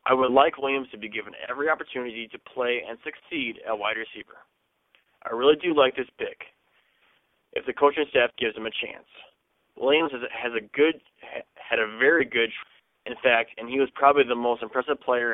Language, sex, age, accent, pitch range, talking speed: English, male, 20-39, American, 120-150 Hz, 190 wpm